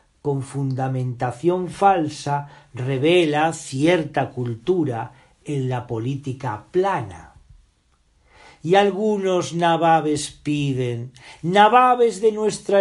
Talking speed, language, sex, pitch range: 80 wpm, Spanish, male, 130-185 Hz